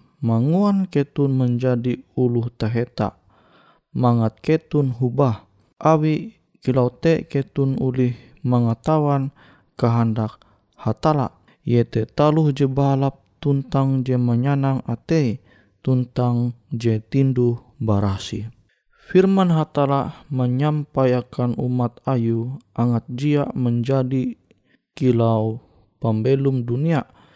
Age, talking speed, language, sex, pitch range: 20-39, 80 wpm, Indonesian, male, 115-140 Hz